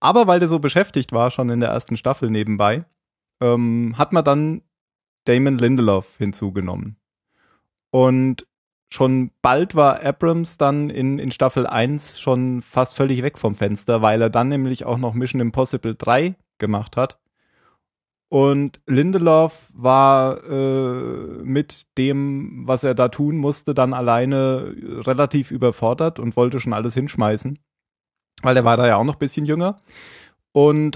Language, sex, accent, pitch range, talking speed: German, male, German, 120-145 Hz, 150 wpm